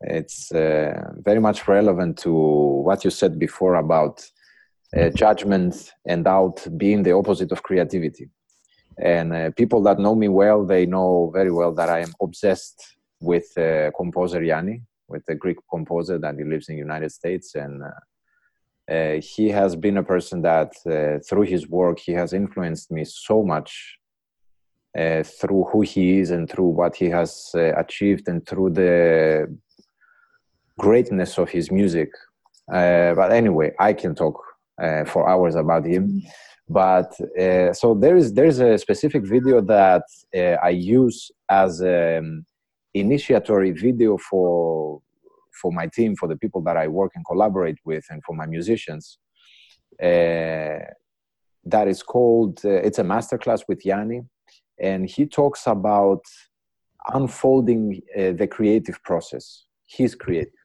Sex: male